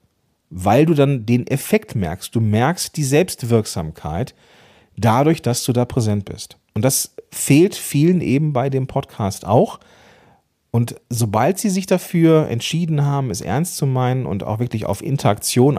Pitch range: 110-145 Hz